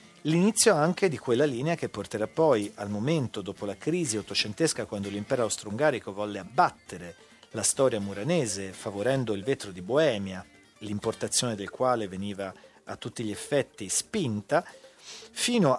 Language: Italian